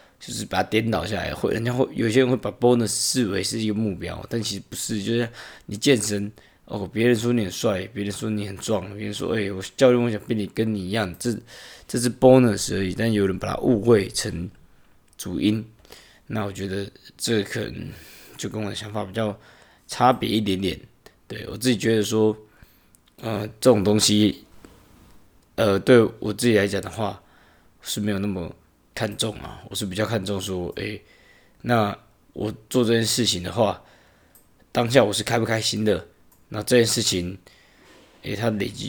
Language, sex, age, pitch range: Chinese, male, 20-39, 95-110 Hz